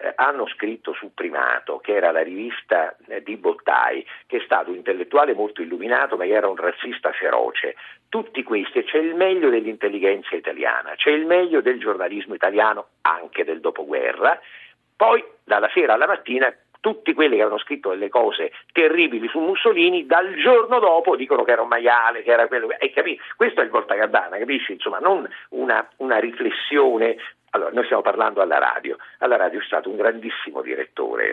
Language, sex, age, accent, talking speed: Italian, male, 50-69, native, 170 wpm